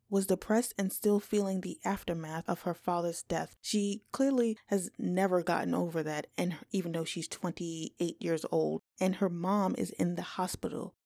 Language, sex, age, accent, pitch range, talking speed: English, female, 20-39, American, 170-210 Hz, 180 wpm